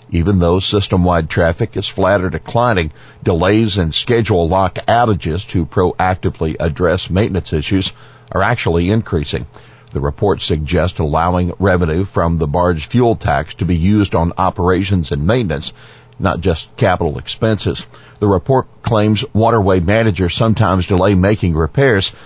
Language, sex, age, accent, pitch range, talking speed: English, male, 50-69, American, 90-110 Hz, 135 wpm